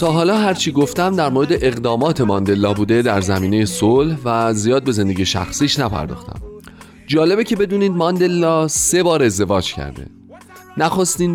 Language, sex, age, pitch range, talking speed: Persian, male, 30-49, 95-155 Hz, 145 wpm